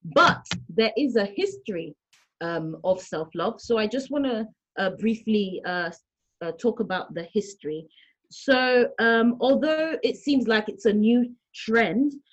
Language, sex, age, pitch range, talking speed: English, female, 30-49, 190-235 Hz, 145 wpm